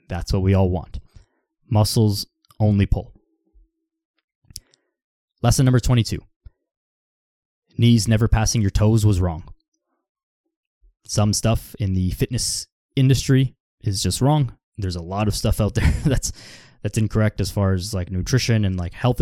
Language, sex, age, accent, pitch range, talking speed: English, male, 20-39, American, 95-120 Hz, 140 wpm